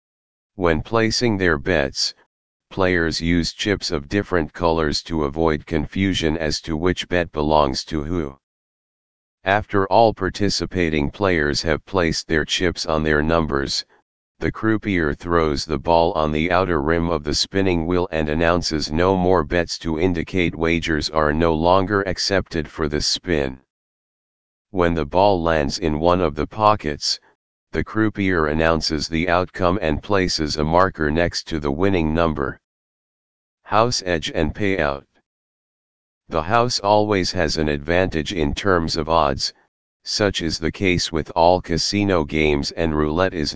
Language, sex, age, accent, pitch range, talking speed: English, male, 40-59, American, 75-90 Hz, 145 wpm